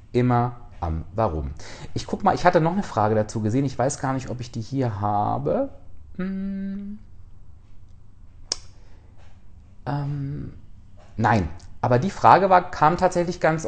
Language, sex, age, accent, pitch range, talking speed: German, male, 40-59, German, 100-145 Hz, 140 wpm